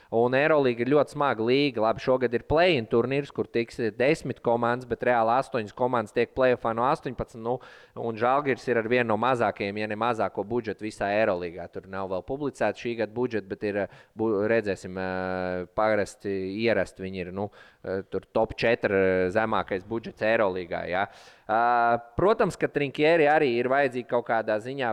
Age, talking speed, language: 20-39, 155 wpm, English